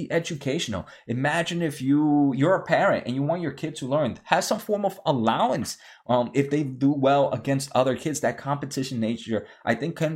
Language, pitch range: English, 115-145 Hz